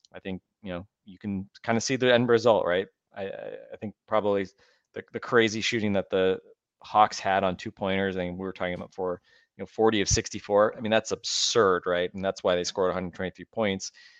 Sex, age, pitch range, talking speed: male, 30-49, 90-100 Hz, 220 wpm